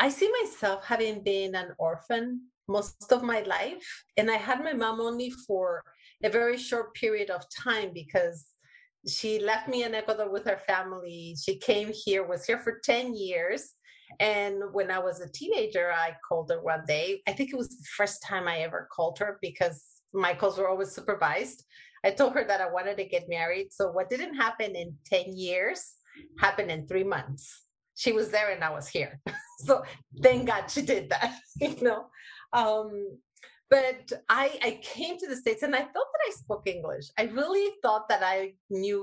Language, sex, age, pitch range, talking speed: English, female, 30-49, 185-245 Hz, 190 wpm